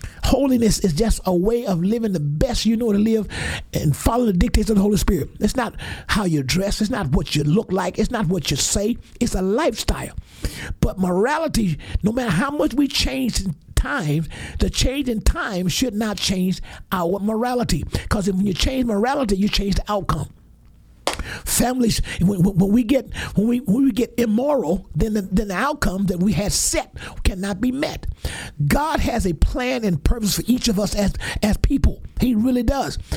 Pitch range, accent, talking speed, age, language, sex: 180-235 Hz, American, 195 wpm, 50-69, English, male